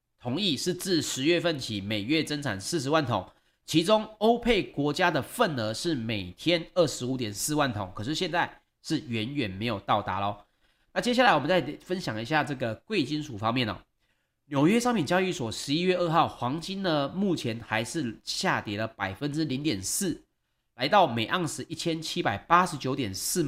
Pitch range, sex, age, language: 120-175 Hz, male, 30-49, Chinese